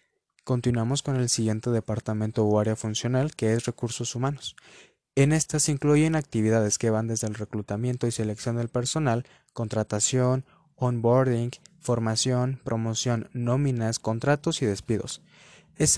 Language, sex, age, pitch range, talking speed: Spanish, male, 20-39, 110-140 Hz, 130 wpm